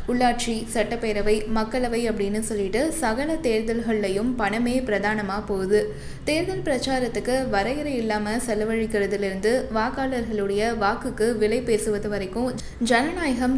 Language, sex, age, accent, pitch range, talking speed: Tamil, female, 20-39, native, 210-250 Hz, 95 wpm